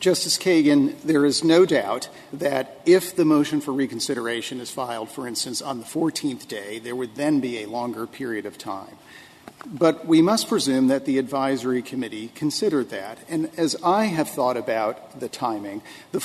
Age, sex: 50-69, male